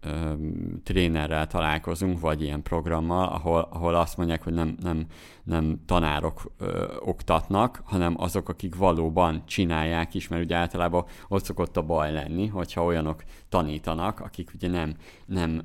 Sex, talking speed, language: male, 140 wpm, Hungarian